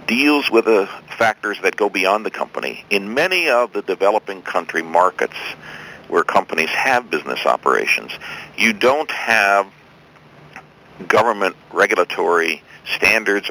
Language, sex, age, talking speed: English, male, 60-79, 120 wpm